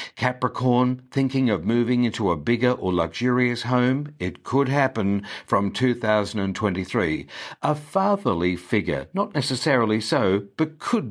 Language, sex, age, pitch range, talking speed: English, male, 60-79, 100-130 Hz, 125 wpm